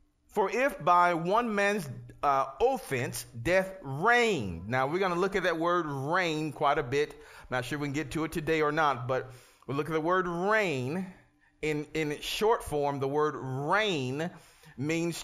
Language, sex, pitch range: English, male, 145-195 Hz